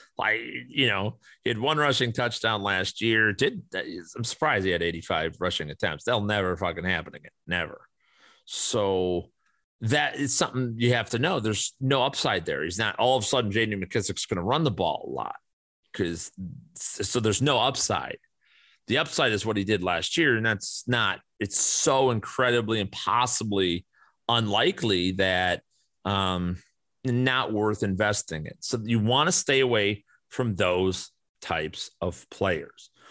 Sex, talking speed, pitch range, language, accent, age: male, 165 wpm, 95-120 Hz, English, American, 40-59